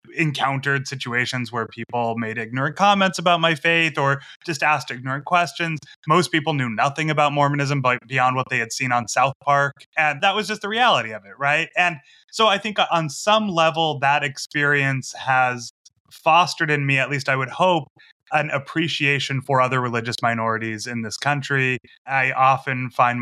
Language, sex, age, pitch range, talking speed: English, male, 20-39, 125-155 Hz, 175 wpm